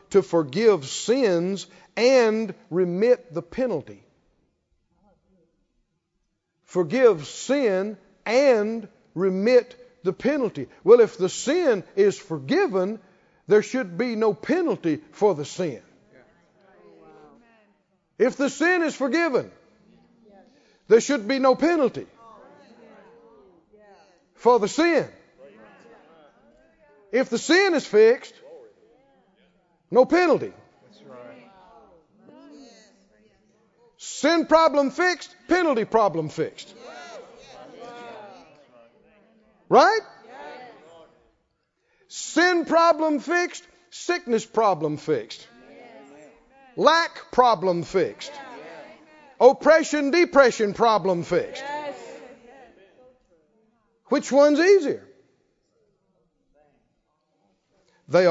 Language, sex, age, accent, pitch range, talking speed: English, male, 50-69, American, 185-290 Hz, 75 wpm